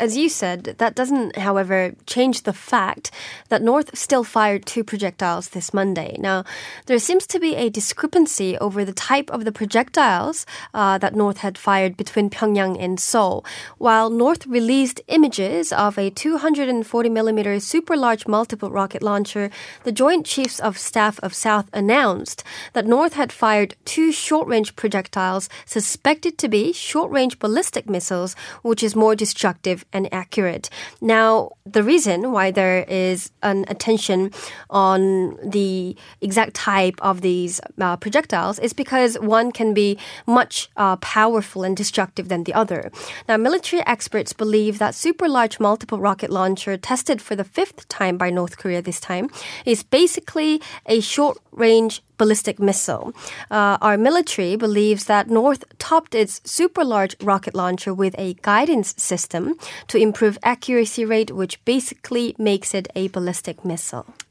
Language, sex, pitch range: Korean, female, 195-245 Hz